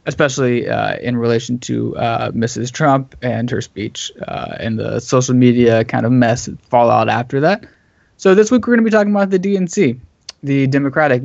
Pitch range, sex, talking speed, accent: 115-145 Hz, male, 190 wpm, American